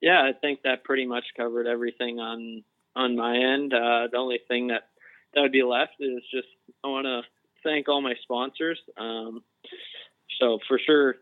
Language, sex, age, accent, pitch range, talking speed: English, male, 20-39, American, 115-130 Hz, 180 wpm